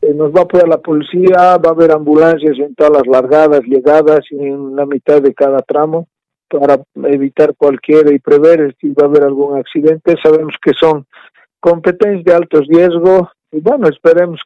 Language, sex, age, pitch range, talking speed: Spanish, male, 50-69, 150-175 Hz, 175 wpm